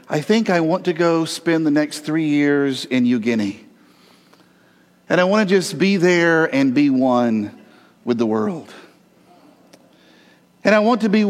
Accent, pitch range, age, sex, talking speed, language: American, 135-190 Hz, 50-69, male, 165 wpm, English